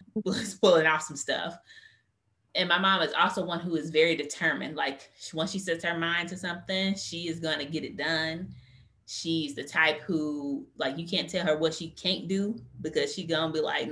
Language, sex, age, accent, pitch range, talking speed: English, female, 20-39, American, 155-195 Hz, 205 wpm